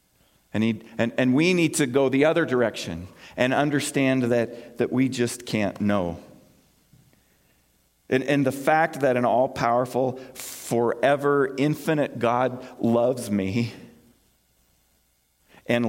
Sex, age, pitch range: male, 50-69, 100-155 Hz